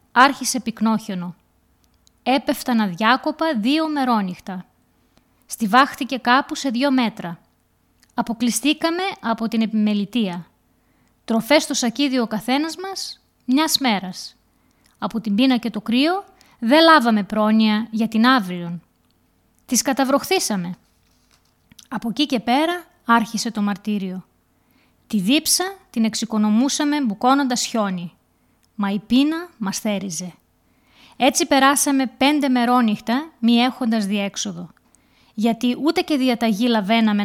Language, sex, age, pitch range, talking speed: Greek, female, 20-39, 205-270 Hz, 110 wpm